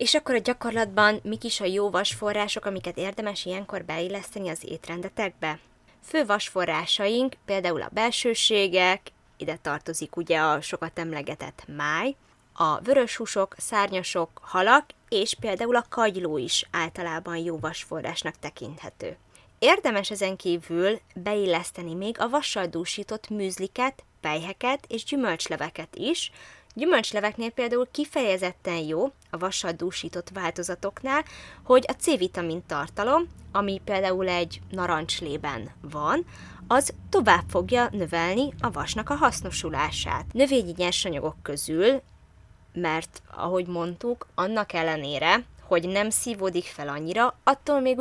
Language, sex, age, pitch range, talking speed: Hungarian, female, 20-39, 170-230 Hz, 115 wpm